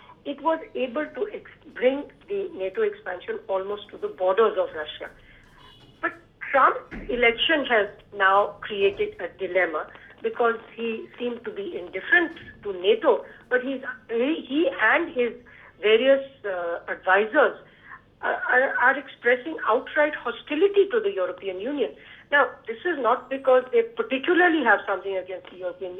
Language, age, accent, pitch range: English, 50-69, Indian, 210-345 Hz